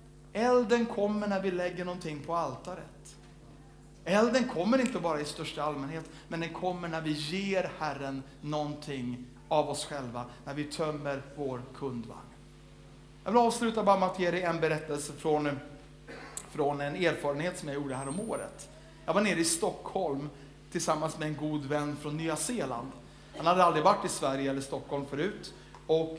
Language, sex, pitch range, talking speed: Swedish, male, 145-180 Hz, 170 wpm